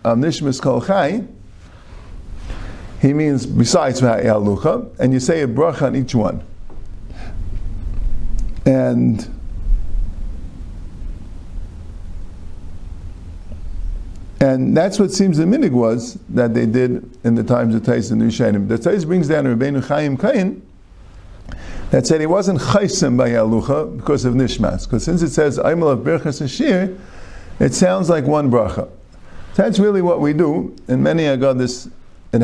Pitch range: 95-135 Hz